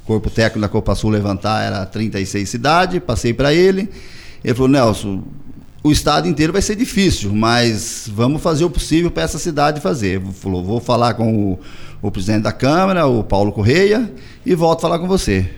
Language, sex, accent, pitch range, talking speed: Portuguese, male, Brazilian, 105-155 Hz, 190 wpm